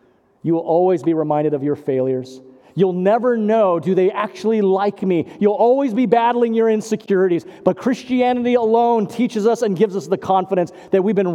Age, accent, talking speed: 40-59, American, 185 wpm